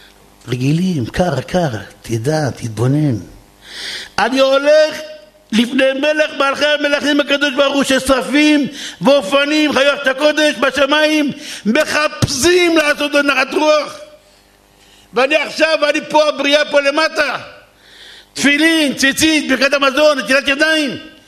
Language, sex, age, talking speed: Hebrew, male, 60-79, 100 wpm